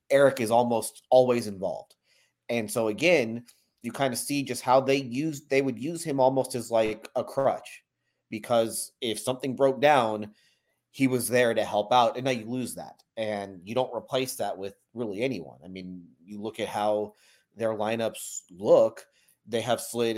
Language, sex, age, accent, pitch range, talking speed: English, male, 30-49, American, 105-130 Hz, 180 wpm